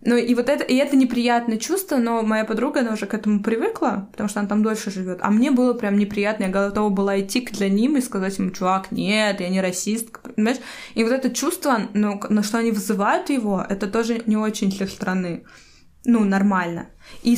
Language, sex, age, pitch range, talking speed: Russian, female, 20-39, 205-240 Hz, 210 wpm